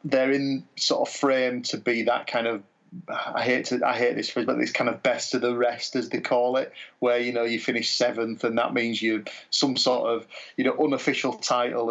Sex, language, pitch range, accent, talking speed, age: male, English, 115-145 Hz, British, 230 wpm, 30-49